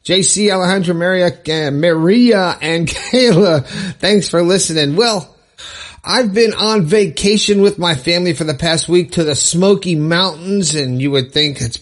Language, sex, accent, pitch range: English, male, American, 125-180 Hz